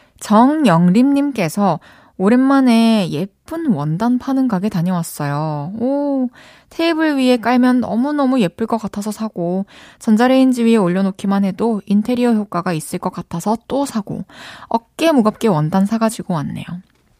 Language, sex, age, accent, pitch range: Korean, female, 20-39, native, 185-260 Hz